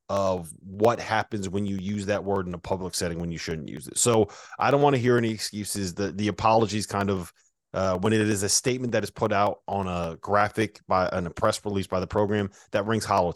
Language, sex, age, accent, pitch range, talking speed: English, male, 30-49, American, 100-120 Hz, 240 wpm